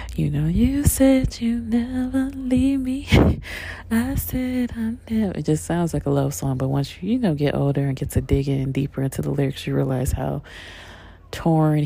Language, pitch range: English, 130-155 Hz